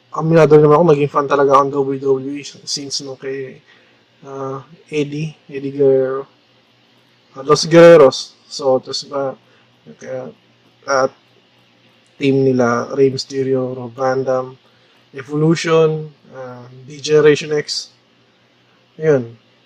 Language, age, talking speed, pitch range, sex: Filipino, 20-39, 100 wpm, 130-155 Hz, male